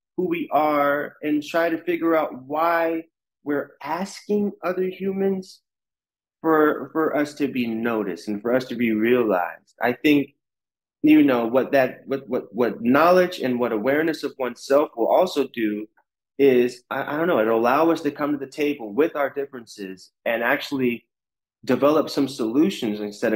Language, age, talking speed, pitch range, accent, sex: English, 30-49, 165 wpm, 120-170 Hz, American, male